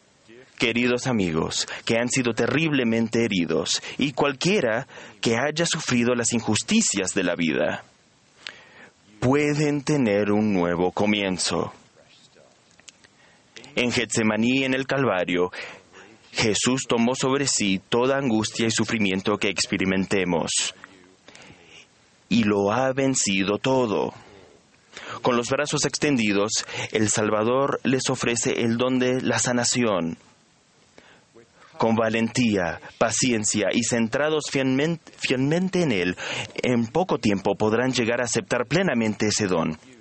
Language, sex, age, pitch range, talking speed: Spanish, male, 30-49, 105-135 Hz, 110 wpm